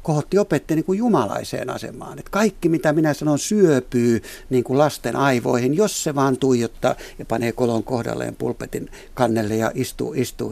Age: 60-79